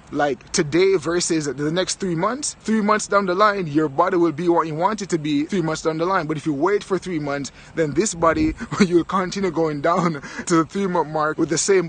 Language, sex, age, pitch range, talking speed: English, male, 20-39, 155-195 Hz, 240 wpm